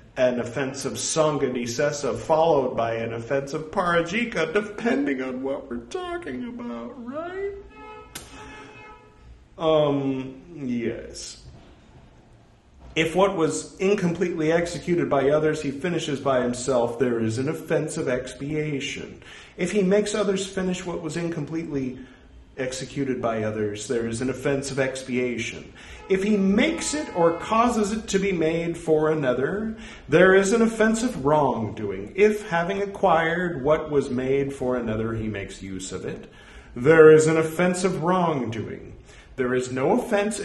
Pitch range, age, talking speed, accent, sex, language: 130-190 Hz, 40-59, 135 wpm, American, male, English